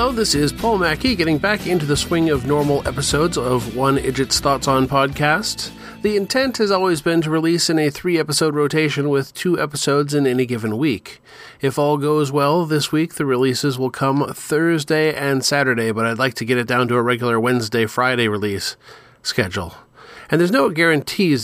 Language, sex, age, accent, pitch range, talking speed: English, male, 40-59, American, 125-150 Hz, 190 wpm